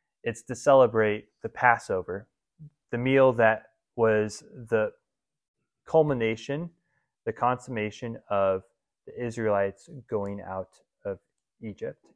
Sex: male